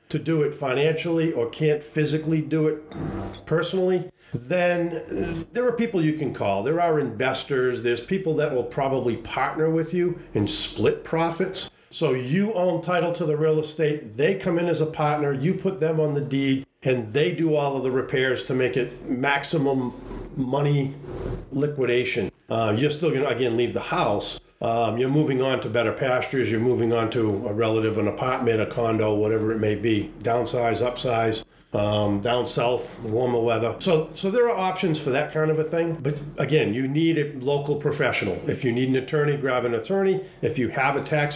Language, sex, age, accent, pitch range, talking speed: English, male, 50-69, American, 120-155 Hz, 190 wpm